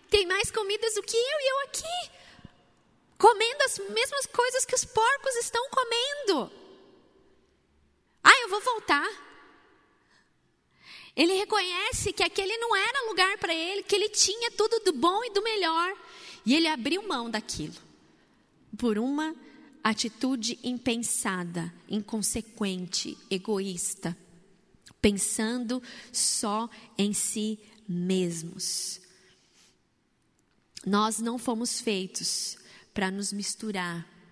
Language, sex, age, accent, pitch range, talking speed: Portuguese, female, 20-39, Brazilian, 195-305 Hz, 110 wpm